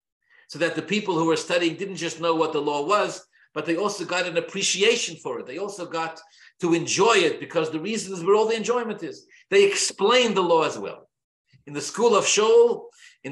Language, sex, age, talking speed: English, male, 50-69, 220 wpm